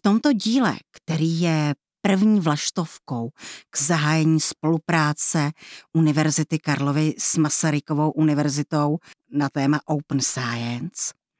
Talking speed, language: 100 wpm, Czech